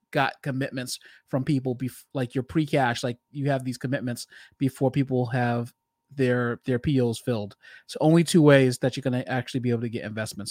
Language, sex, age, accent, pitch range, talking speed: English, male, 30-49, American, 130-155 Hz, 190 wpm